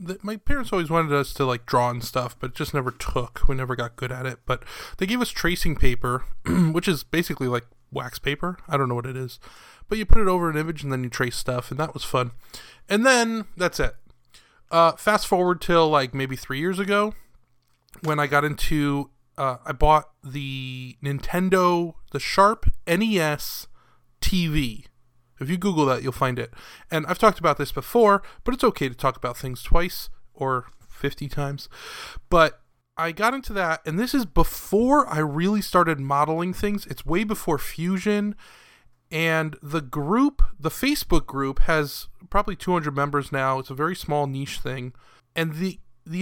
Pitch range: 130-180 Hz